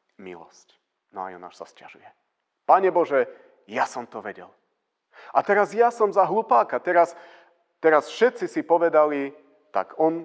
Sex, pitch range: male, 105-140 Hz